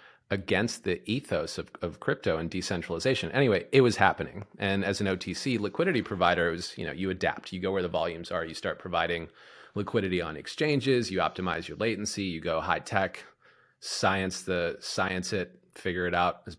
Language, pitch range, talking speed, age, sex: English, 90-110 Hz, 185 wpm, 30-49, male